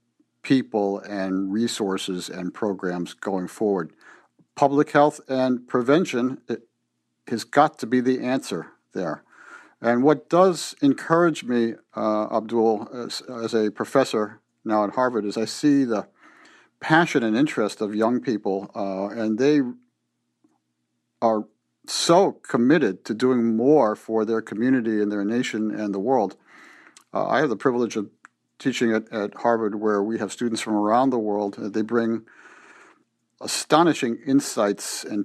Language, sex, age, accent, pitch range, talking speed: English, male, 50-69, American, 105-135 Hz, 140 wpm